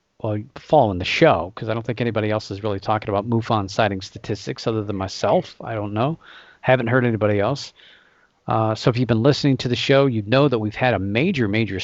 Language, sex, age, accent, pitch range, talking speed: English, male, 40-59, American, 110-140 Hz, 225 wpm